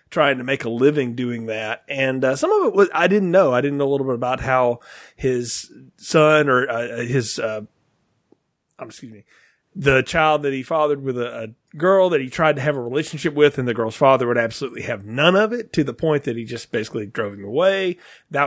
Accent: American